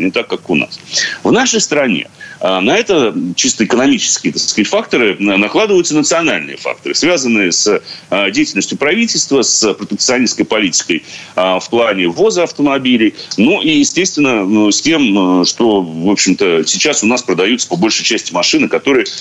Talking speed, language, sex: 140 wpm, Russian, male